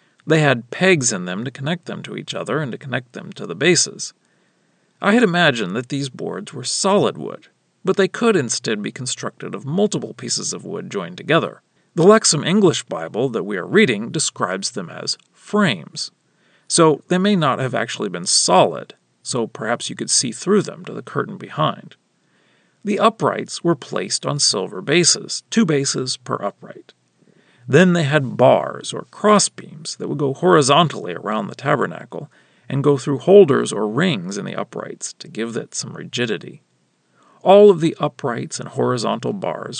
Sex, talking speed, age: male, 175 wpm, 40-59